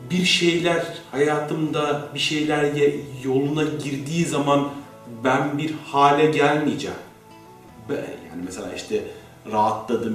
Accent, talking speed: native, 95 wpm